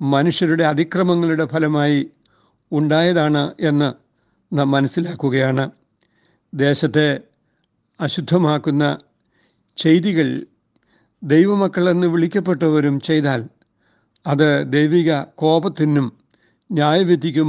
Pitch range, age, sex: 140-170 Hz, 60-79, male